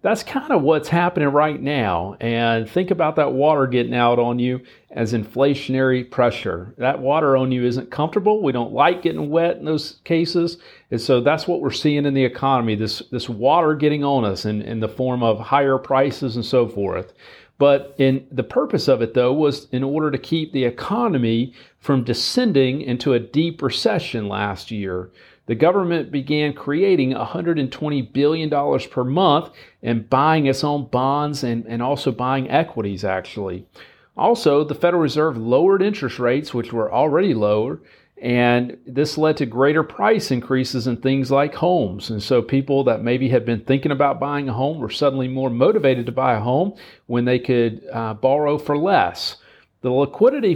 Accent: American